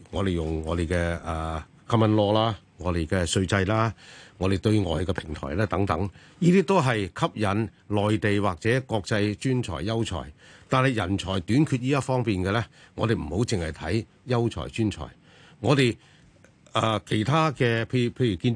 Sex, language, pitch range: male, Chinese, 95-130 Hz